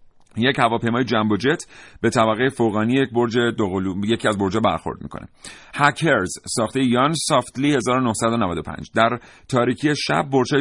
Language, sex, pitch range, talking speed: Persian, male, 110-140 Hz, 130 wpm